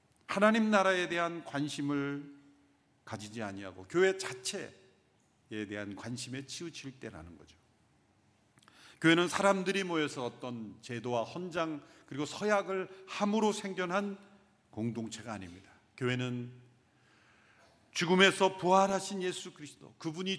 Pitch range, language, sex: 120-190 Hz, Korean, male